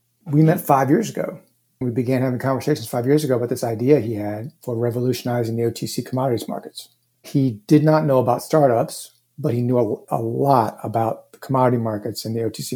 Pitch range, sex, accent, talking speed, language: 120-135 Hz, male, American, 195 wpm, English